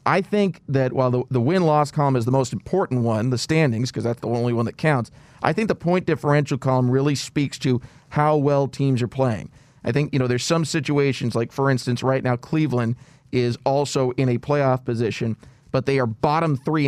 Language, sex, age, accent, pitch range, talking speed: English, male, 40-59, American, 125-155 Hz, 215 wpm